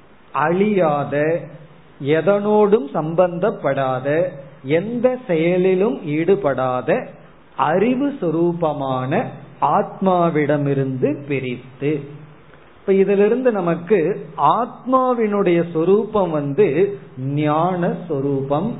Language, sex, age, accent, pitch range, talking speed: Tamil, male, 40-59, native, 145-200 Hz, 55 wpm